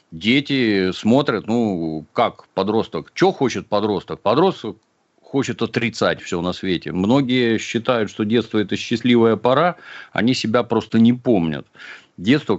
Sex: male